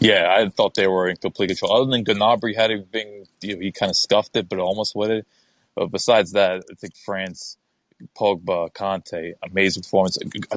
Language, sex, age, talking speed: English, male, 20-39, 195 wpm